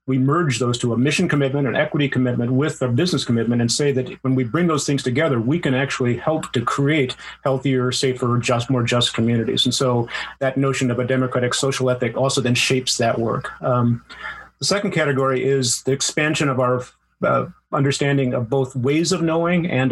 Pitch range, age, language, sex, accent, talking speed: 120-140 Hz, 30-49, English, male, American, 200 wpm